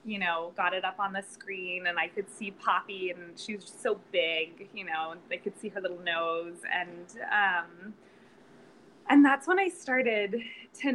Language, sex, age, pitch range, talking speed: English, female, 20-39, 175-215 Hz, 195 wpm